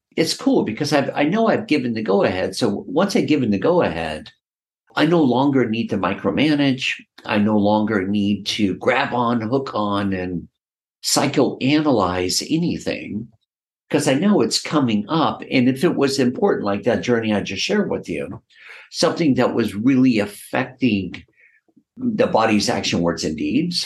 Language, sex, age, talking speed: English, male, 50-69, 160 wpm